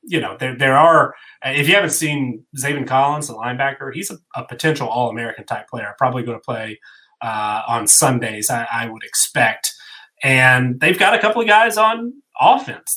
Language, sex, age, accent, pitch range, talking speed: English, male, 30-49, American, 120-150 Hz, 190 wpm